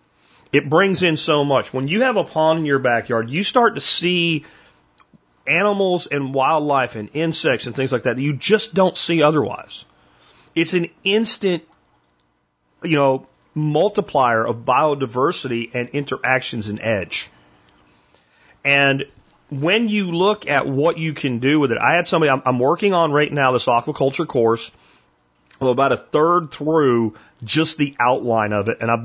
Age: 40-59